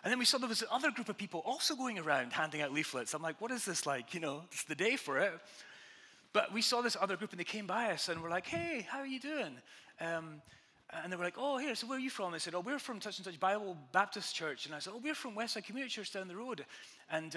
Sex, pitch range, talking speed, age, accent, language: male, 160-240 Hz, 290 wpm, 30-49, British, English